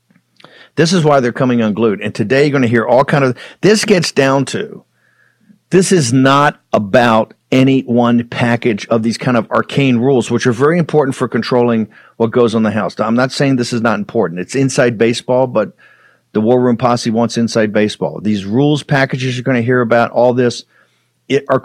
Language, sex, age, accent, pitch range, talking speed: English, male, 50-69, American, 115-135 Hz, 200 wpm